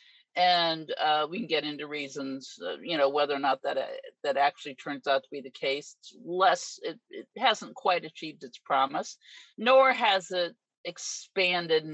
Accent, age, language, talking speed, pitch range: American, 50-69, English, 180 wpm, 145-185 Hz